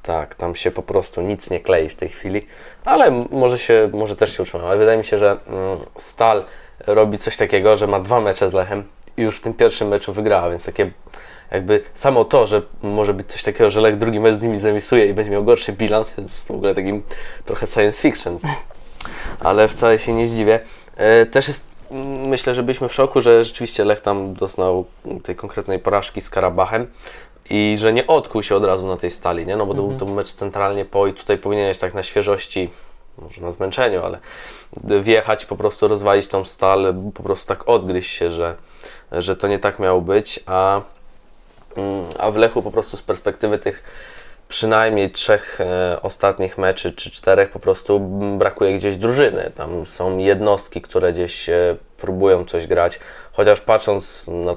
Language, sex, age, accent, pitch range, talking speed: Polish, male, 20-39, native, 95-110 Hz, 185 wpm